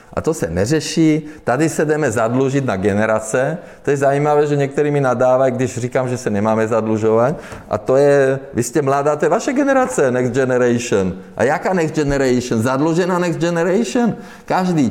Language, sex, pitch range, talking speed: Czech, male, 115-160 Hz, 175 wpm